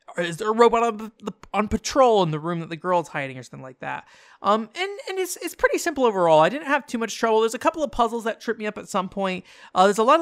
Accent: American